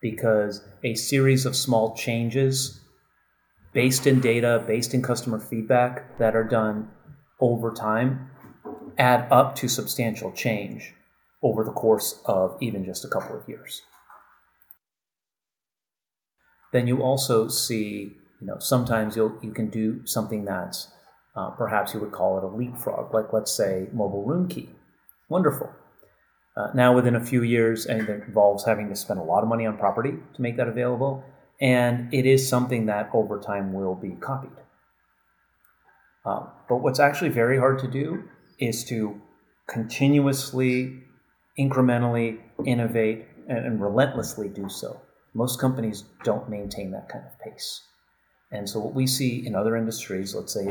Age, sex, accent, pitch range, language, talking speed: 30-49, male, American, 110-130 Hz, English, 150 wpm